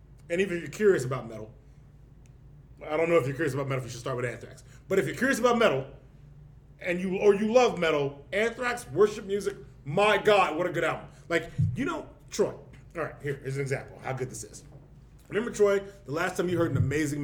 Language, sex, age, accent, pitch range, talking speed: English, male, 30-49, American, 135-175 Hz, 230 wpm